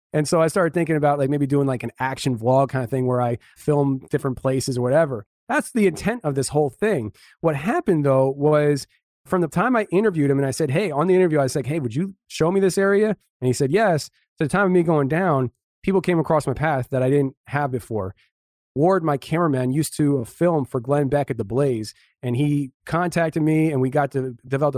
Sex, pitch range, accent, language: male, 135-175 Hz, American, English